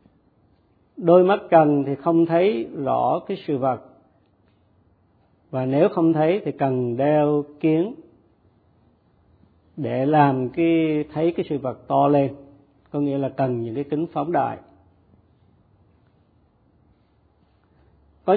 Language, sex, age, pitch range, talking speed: Vietnamese, male, 50-69, 120-155 Hz, 120 wpm